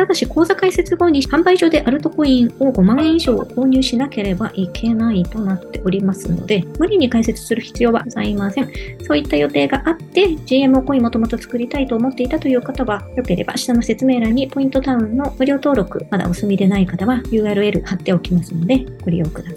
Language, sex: Japanese, male